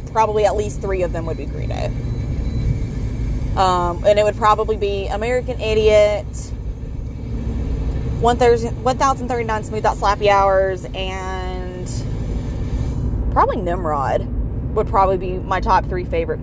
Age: 20-39